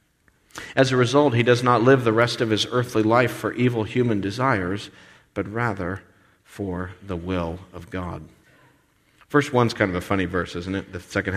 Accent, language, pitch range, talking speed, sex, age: American, English, 95-120 Hz, 185 wpm, male, 50-69